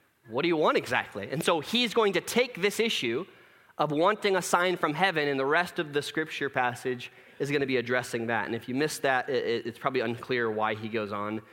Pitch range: 125-185 Hz